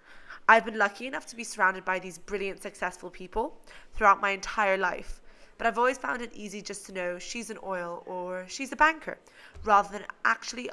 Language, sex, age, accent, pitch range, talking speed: English, female, 20-39, British, 185-225 Hz, 195 wpm